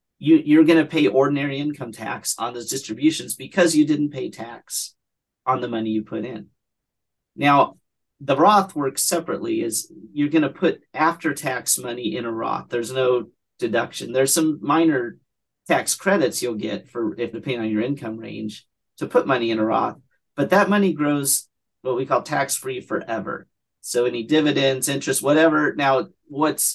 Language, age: English, 40-59